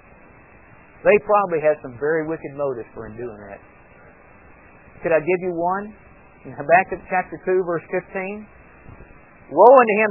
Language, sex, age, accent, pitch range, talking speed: English, male, 50-69, American, 140-210 Hz, 150 wpm